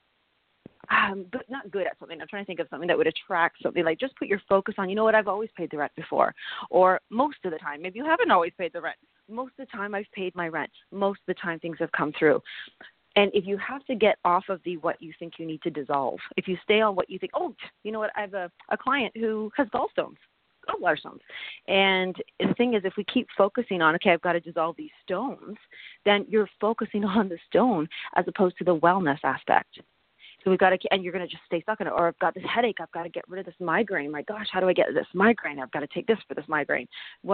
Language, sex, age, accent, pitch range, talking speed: English, female, 30-49, American, 170-215 Hz, 265 wpm